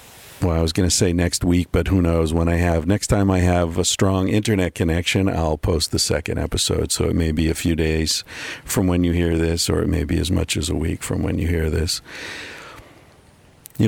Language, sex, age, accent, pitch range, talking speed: English, male, 50-69, American, 80-90 Hz, 235 wpm